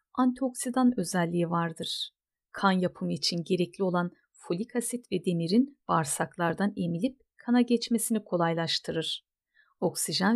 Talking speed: 105 wpm